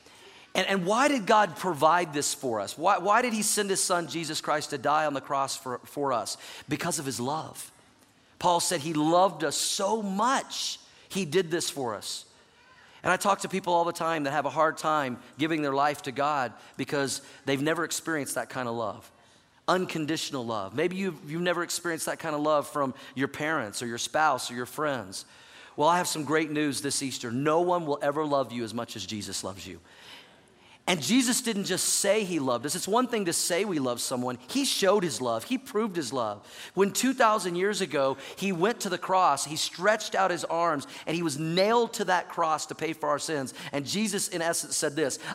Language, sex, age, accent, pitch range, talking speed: English, male, 40-59, American, 140-185 Hz, 215 wpm